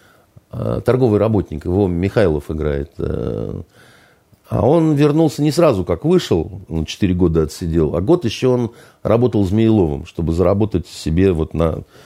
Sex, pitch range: male, 90-120 Hz